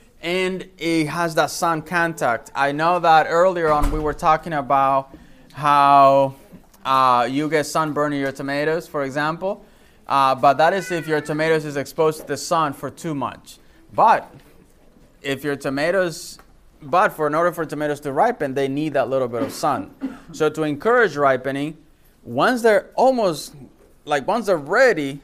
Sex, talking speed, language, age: male, 165 wpm, English, 20-39